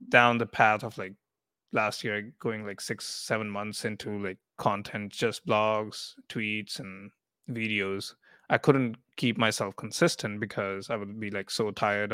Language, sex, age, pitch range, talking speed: English, male, 20-39, 105-120 Hz, 160 wpm